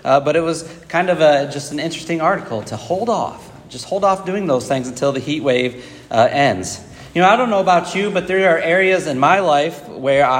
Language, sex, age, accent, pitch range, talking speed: English, male, 30-49, American, 140-175 Hz, 235 wpm